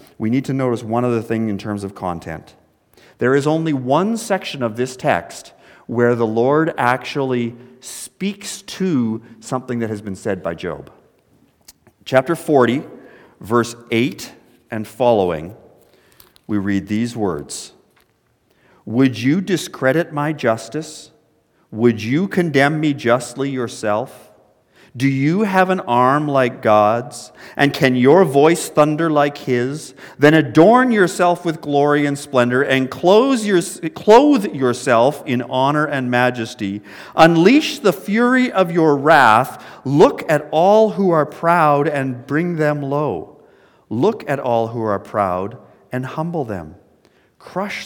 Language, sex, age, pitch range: English, male, 40-59, 120-170 Hz